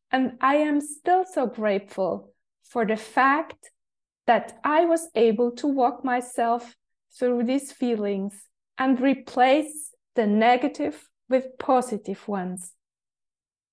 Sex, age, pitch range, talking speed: female, 20-39, 220-280 Hz, 115 wpm